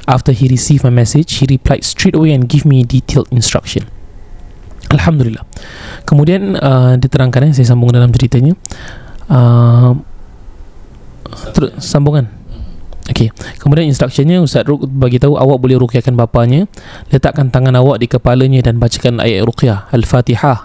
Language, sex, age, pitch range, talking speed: Malay, male, 20-39, 120-145 Hz, 135 wpm